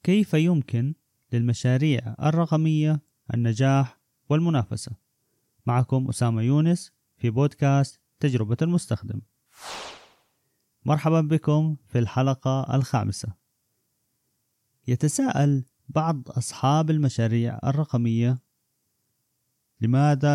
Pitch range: 120-155 Hz